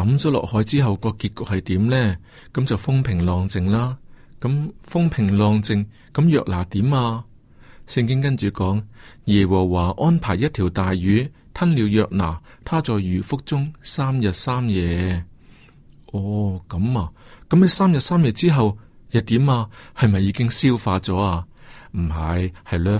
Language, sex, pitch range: Chinese, male, 100-135 Hz